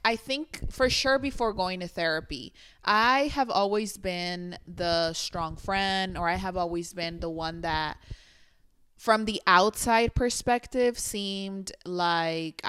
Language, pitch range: English, 170-200 Hz